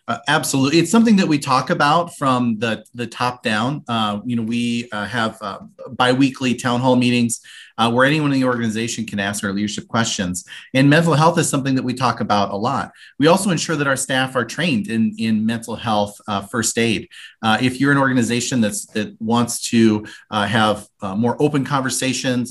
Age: 30-49